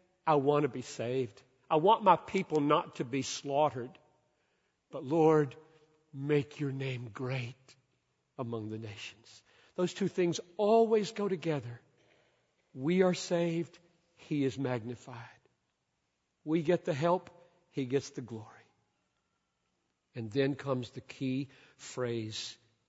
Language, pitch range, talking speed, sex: English, 115-165 Hz, 125 wpm, male